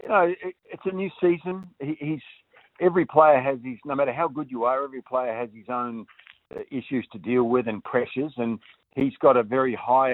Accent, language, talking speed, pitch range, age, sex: Australian, English, 200 wpm, 120-155 Hz, 50-69, male